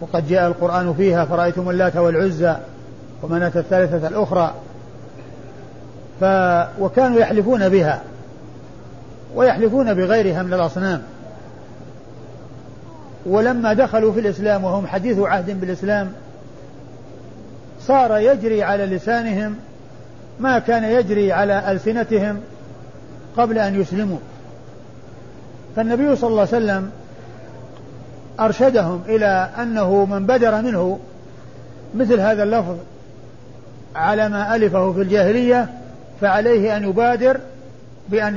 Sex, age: male, 50-69